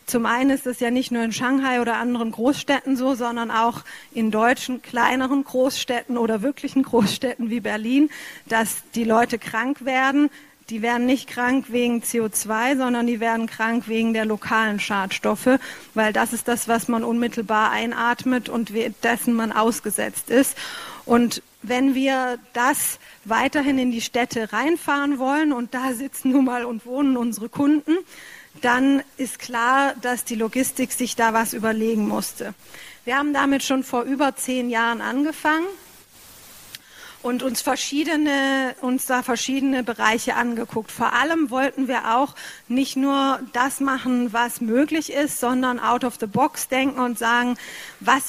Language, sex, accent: German, female, German